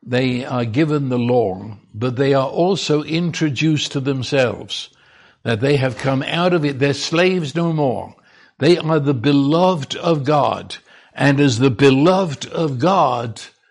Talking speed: 155 wpm